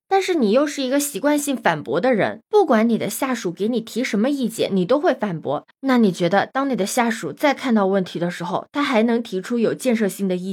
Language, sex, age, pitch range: Chinese, female, 20-39, 190-275 Hz